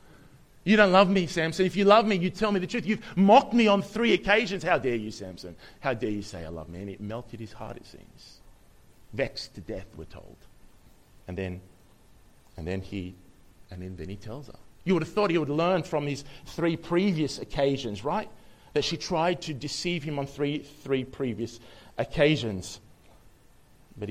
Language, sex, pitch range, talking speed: English, male, 90-120 Hz, 195 wpm